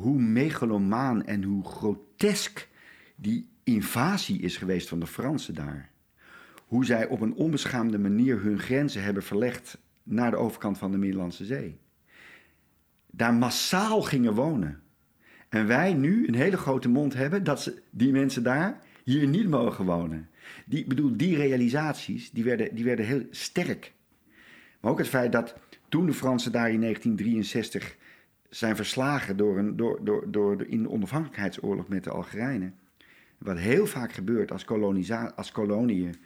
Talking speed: 140 wpm